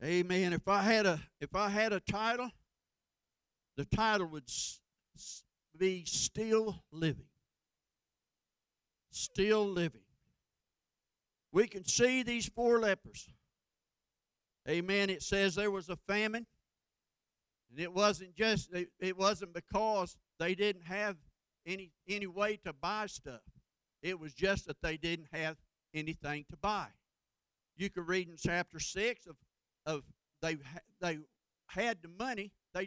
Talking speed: 135 wpm